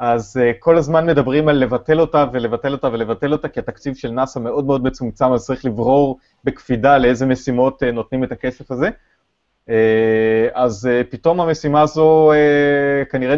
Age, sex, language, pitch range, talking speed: 30-49, male, Hebrew, 110-145 Hz, 170 wpm